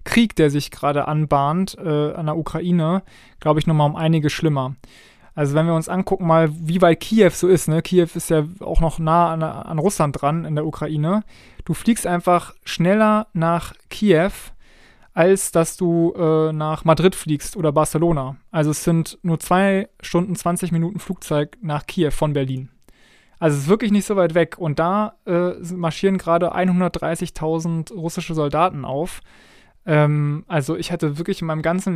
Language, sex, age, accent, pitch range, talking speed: German, male, 20-39, German, 150-175 Hz, 175 wpm